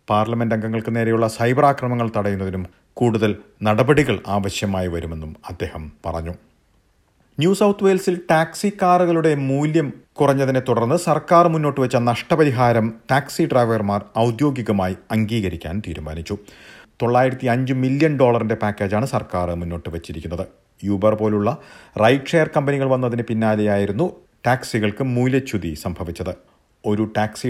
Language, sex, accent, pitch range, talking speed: Malayalam, male, native, 100-130 Hz, 105 wpm